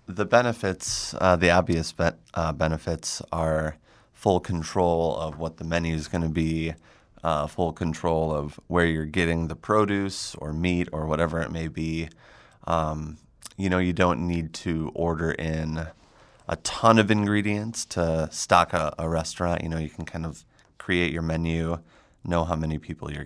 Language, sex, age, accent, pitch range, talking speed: English, male, 30-49, American, 80-90 Hz, 170 wpm